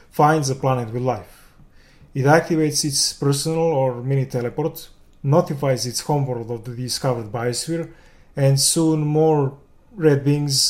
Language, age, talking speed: English, 30-49, 135 wpm